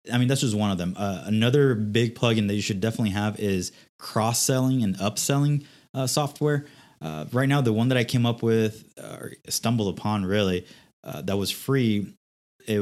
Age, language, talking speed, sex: 20-39, English, 195 wpm, male